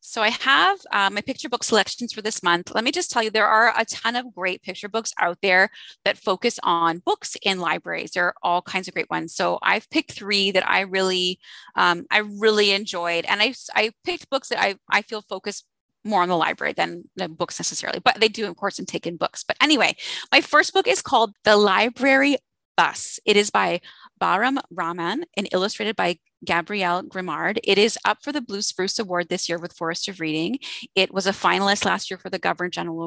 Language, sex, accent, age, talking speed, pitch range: English, female, American, 30-49, 220 wpm, 180-230 Hz